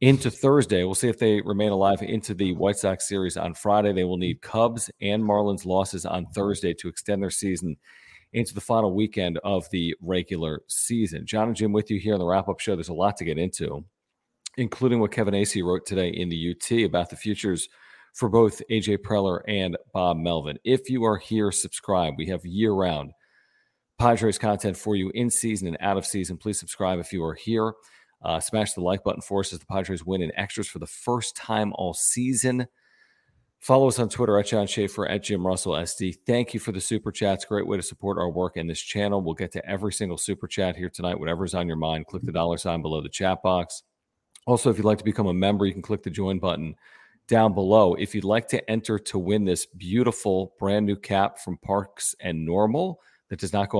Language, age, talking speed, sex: English, 40-59, 220 wpm, male